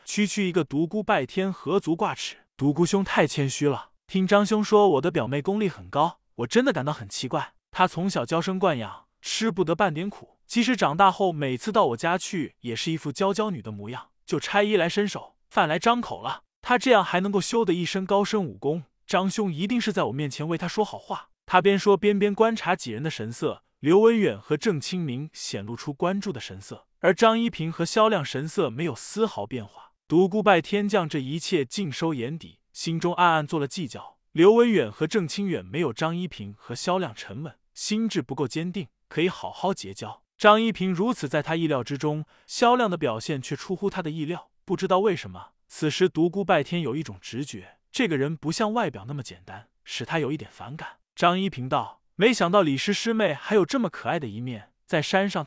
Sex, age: male, 20-39